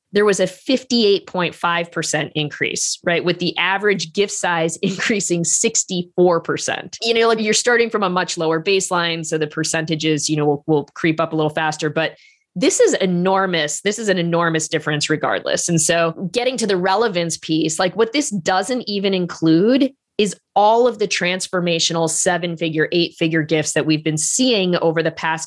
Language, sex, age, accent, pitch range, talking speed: English, female, 20-39, American, 160-185 Hz, 175 wpm